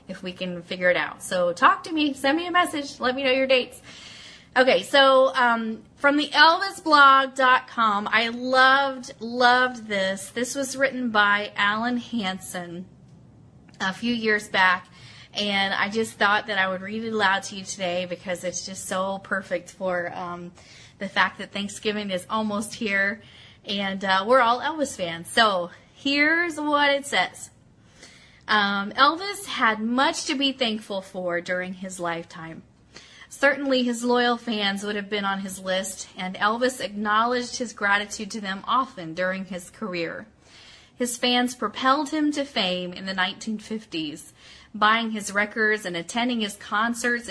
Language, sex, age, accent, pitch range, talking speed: English, female, 30-49, American, 190-255 Hz, 160 wpm